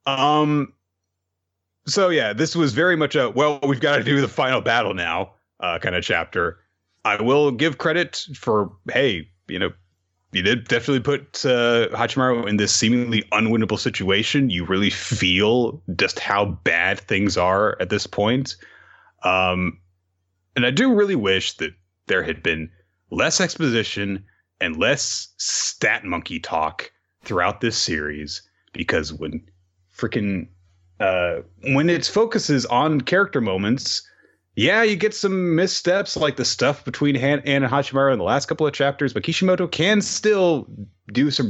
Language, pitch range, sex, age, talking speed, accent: English, 90-150 Hz, male, 30-49, 155 wpm, American